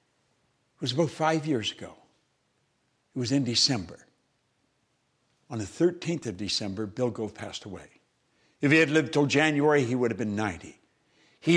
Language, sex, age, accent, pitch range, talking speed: English, male, 60-79, American, 120-175 Hz, 160 wpm